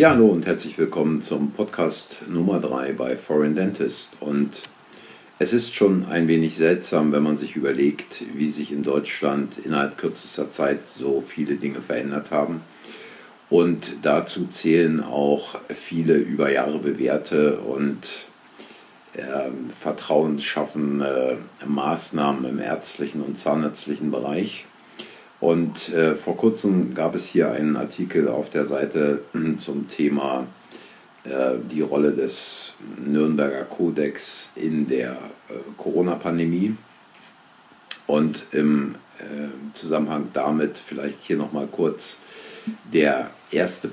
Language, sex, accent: German, male, German